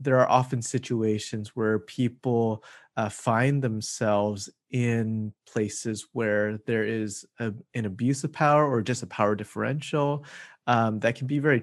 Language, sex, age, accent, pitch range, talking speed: English, male, 30-49, American, 110-130 Hz, 150 wpm